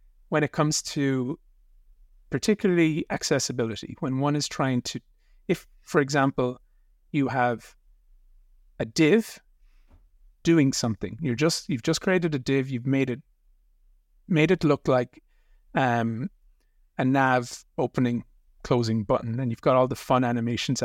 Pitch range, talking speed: 120-150 Hz, 135 wpm